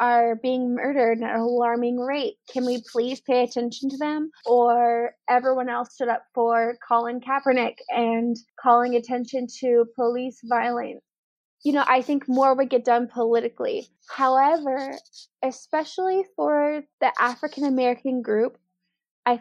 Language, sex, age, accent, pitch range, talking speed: English, female, 20-39, American, 240-285 Hz, 135 wpm